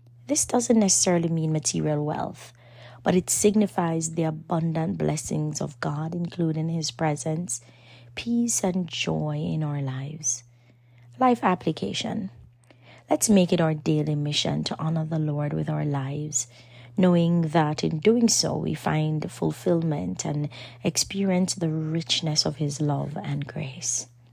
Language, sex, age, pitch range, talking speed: English, female, 30-49, 125-185 Hz, 135 wpm